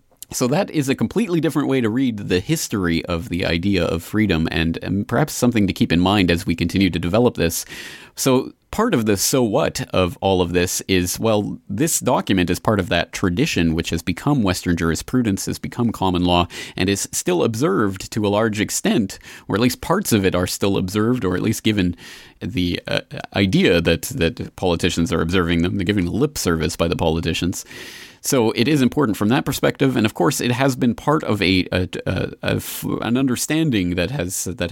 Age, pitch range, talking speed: 30-49, 85-110 Hz, 205 wpm